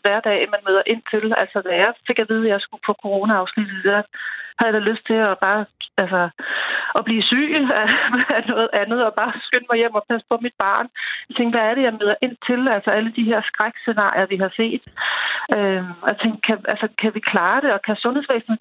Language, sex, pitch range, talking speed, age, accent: Danish, female, 205-245 Hz, 230 wpm, 40-59, native